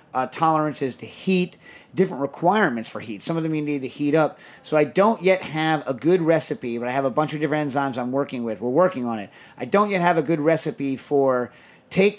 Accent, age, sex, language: American, 40-59, male, English